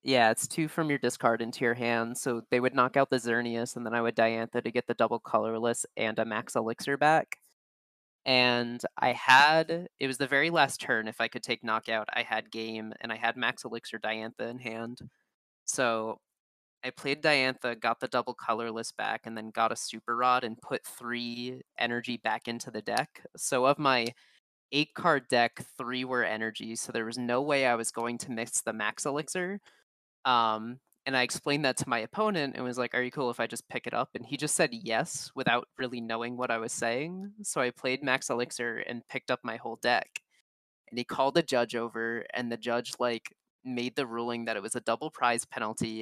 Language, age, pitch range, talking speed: English, 20-39, 115-130 Hz, 215 wpm